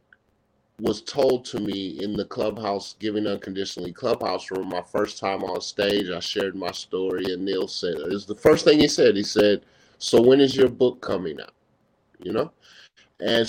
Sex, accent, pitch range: male, American, 105-125 Hz